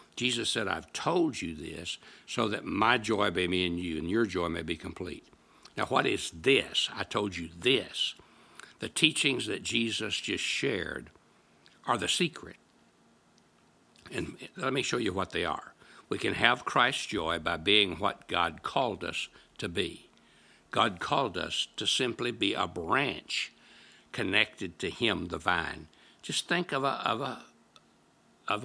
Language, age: English, 60-79